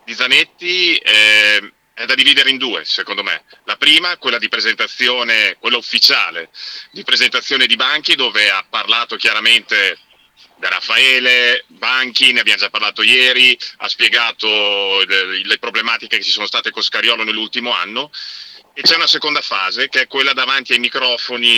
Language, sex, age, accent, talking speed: Italian, male, 40-59, native, 155 wpm